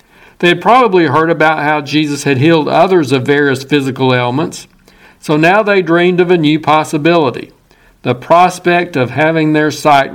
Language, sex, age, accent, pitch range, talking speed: English, male, 60-79, American, 145-180 Hz, 165 wpm